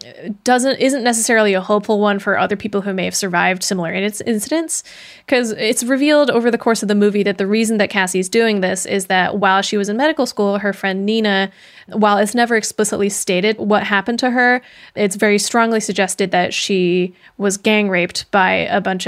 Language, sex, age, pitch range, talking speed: English, female, 20-39, 195-225 Hz, 200 wpm